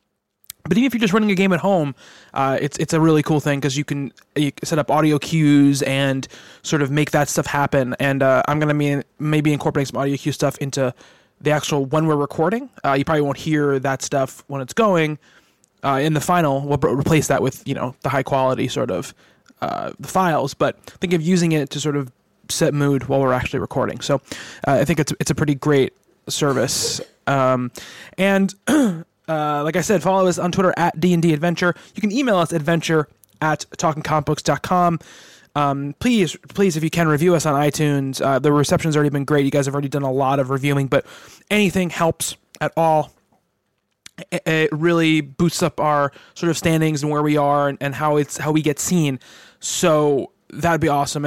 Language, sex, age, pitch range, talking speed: English, male, 20-39, 140-165 Hz, 205 wpm